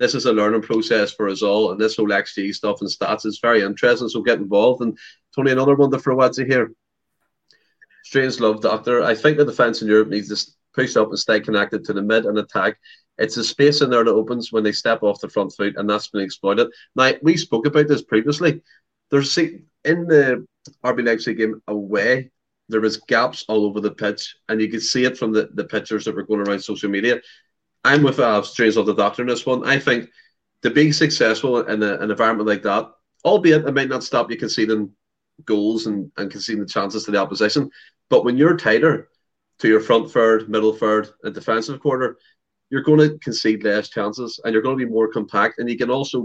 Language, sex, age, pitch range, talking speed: English, male, 30-49, 105-125 Hz, 220 wpm